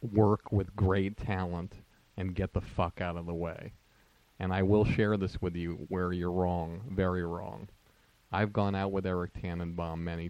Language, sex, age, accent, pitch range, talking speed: English, male, 40-59, American, 90-100 Hz, 180 wpm